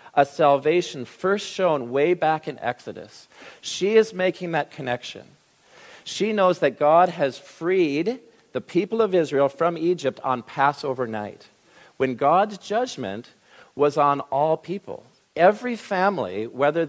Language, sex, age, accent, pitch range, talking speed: English, male, 50-69, American, 130-185 Hz, 135 wpm